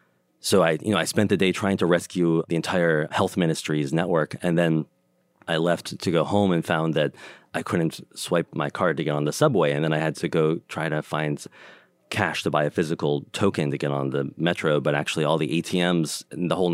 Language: English